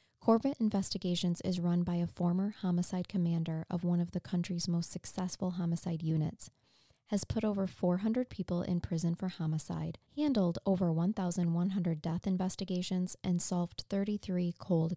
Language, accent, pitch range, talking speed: English, American, 175-205 Hz, 145 wpm